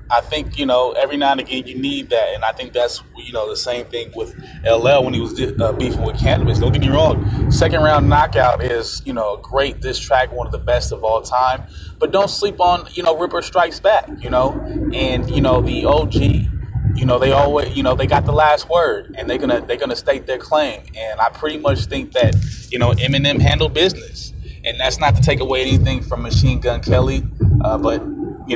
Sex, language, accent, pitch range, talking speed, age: male, English, American, 115-140 Hz, 230 wpm, 20-39